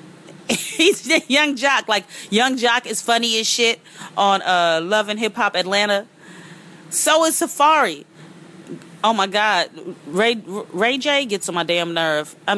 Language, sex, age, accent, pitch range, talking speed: English, female, 30-49, American, 165-230 Hz, 155 wpm